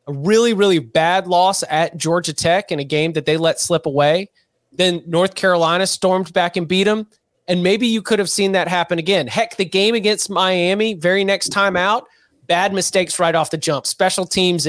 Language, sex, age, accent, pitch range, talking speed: English, male, 30-49, American, 155-200 Hz, 200 wpm